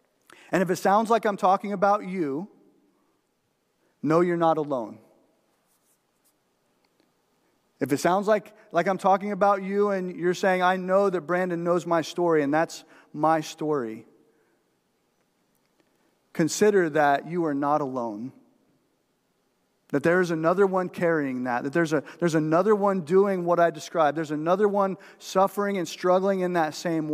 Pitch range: 155-190 Hz